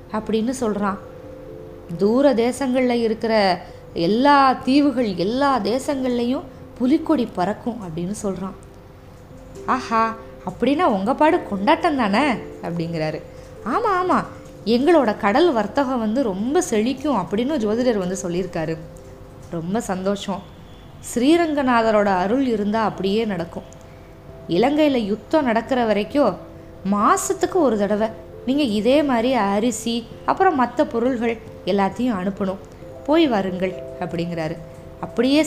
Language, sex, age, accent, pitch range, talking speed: Tamil, female, 20-39, native, 190-275 Hz, 95 wpm